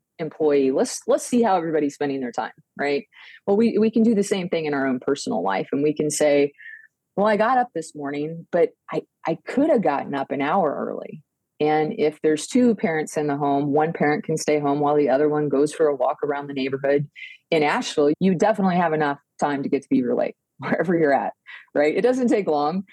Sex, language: female, English